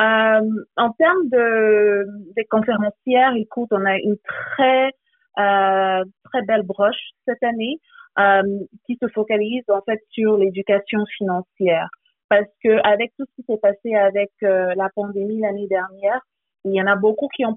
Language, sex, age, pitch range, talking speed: French, female, 30-49, 200-235 Hz, 160 wpm